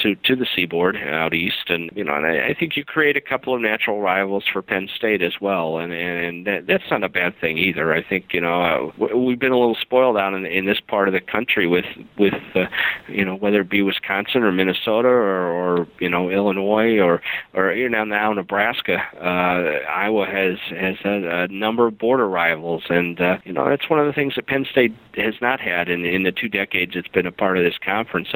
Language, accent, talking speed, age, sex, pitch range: English, American, 240 wpm, 50-69, male, 90-115 Hz